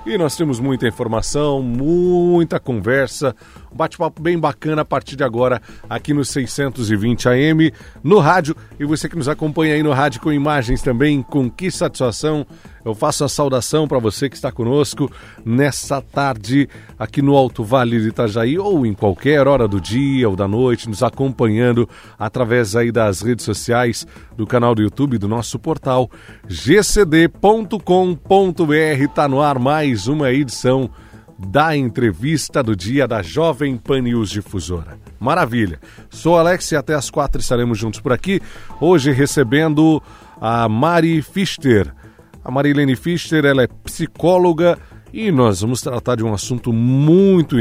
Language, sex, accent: Portuguese, male, Brazilian